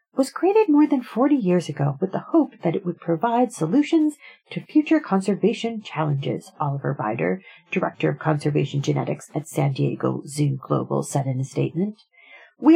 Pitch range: 155-255 Hz